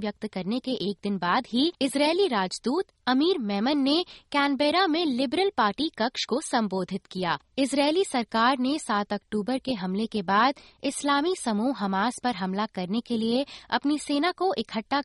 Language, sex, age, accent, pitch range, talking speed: Hindi, female, 20-39, native, 210-290 Hz, 165 wpm